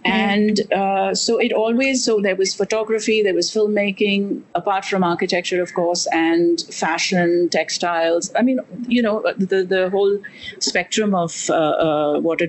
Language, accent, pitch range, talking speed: English, Indian, 180-220 Hz, 160 wpm